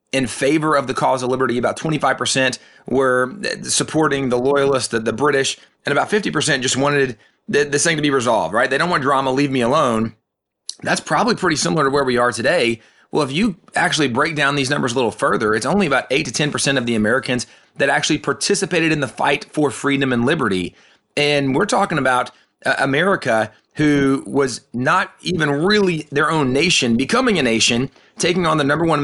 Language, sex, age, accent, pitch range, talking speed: English, male, 30-49, American, 125-155 Hz, 195 wpm